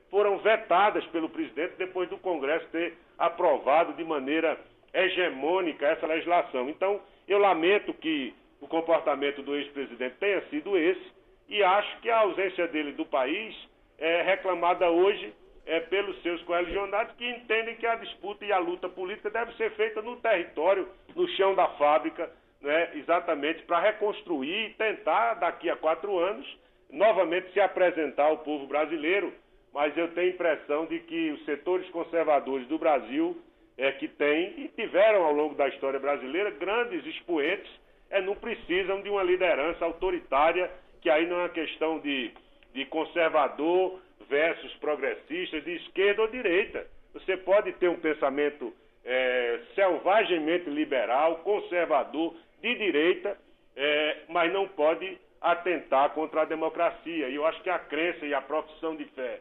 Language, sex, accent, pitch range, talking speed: Portuguese, male, Brazilian, 155-225 Hz, 150 wpm